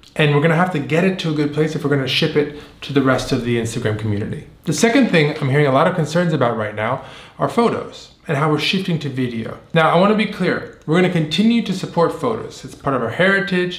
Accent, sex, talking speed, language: American, male, 260 wpm, English